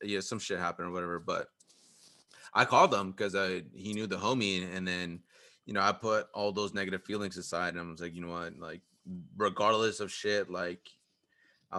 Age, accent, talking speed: 20-39, American, 215 wpm